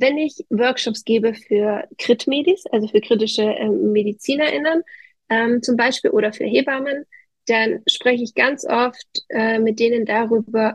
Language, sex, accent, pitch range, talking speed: German, female, German, 215-255 Hz, 145 wpm